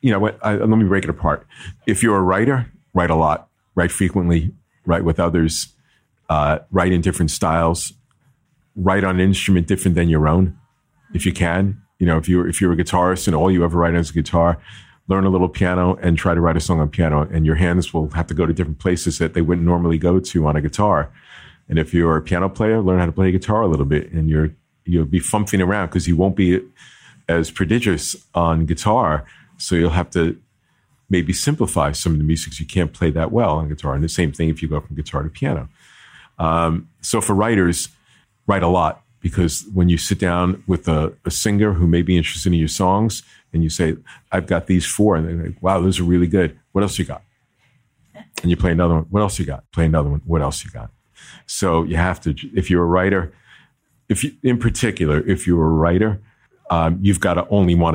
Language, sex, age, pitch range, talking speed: English, male, 40-59, 80-95 Hz, 230 wpm